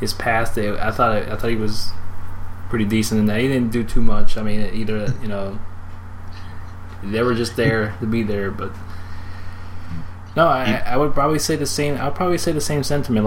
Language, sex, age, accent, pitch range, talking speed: English, male, 20-39, American, 95-110 Hz, 200 wpm